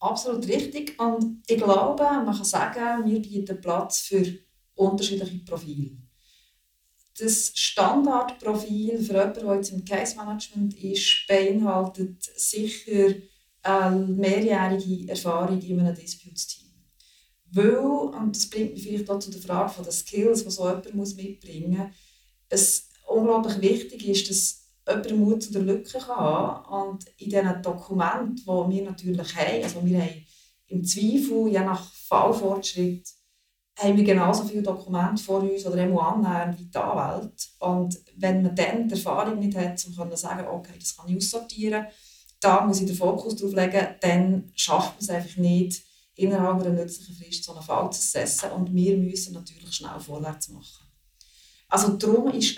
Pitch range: 180-215 Hz